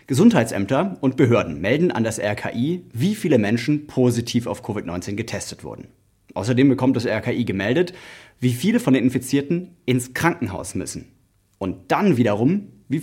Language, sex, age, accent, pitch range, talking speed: German, male, 30-49, German, 110-145 Hz, 145 wpm